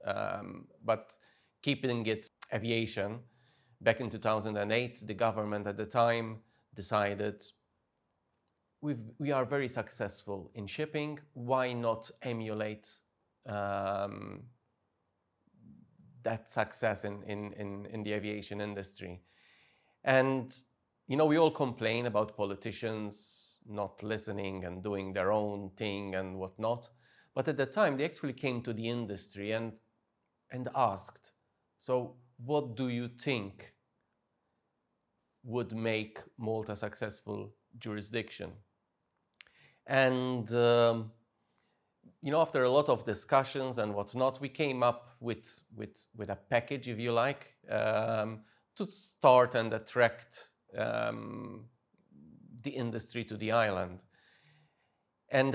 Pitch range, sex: 105-125 Hz, male